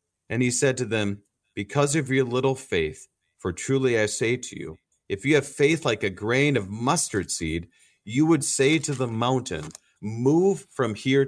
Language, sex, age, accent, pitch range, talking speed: English, male, 40-59, American, 100-140 Hz, 185 wpm